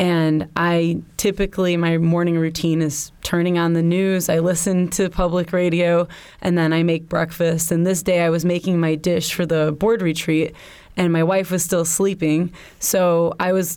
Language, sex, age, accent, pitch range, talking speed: English, female, 20-39, American, 165-180 Hz, 185 wpm